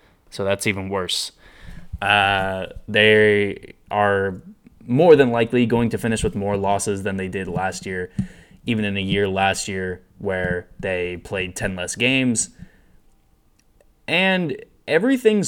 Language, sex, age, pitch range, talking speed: English, male, 20-39, 95-110 Hz, 135 wpm